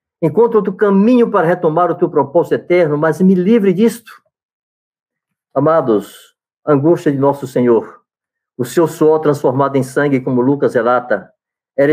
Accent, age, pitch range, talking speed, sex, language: Brazilian, 60-79, 125-155 Hz, 145 wpm, male, Portuguese